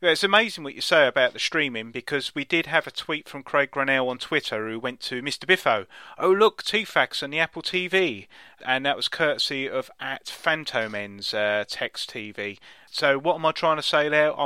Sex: male